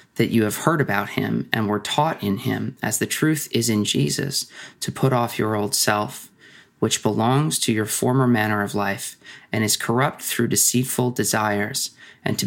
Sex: male